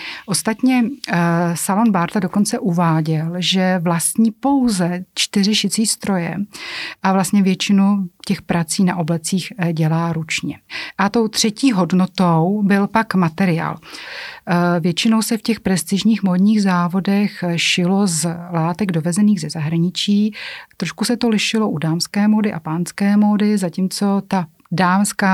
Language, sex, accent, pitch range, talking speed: Czech, female, native, 170-195 Hz, 125 wpm